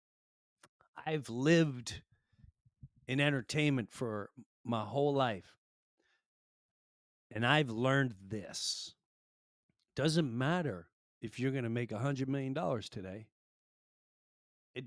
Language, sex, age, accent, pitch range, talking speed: English, male, 40-59, American, 100-140 Hz, 100 wpm